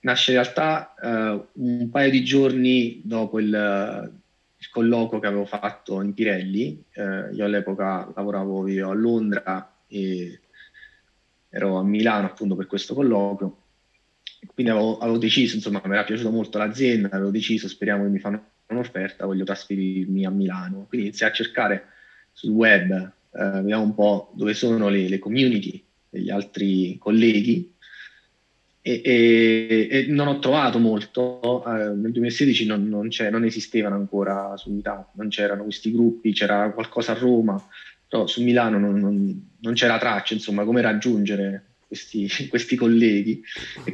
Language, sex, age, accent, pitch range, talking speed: Italian, male, 30-49, native, 100-115 Hz, 150 wpm